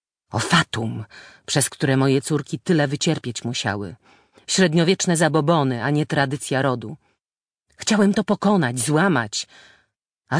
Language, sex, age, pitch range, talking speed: Polish, female, 40-59, 130-175 Hz, 115 wpm